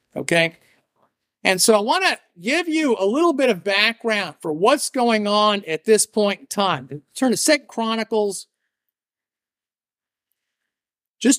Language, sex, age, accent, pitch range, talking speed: English, male, 50-69, American, 195-245 Hz, 150 wpm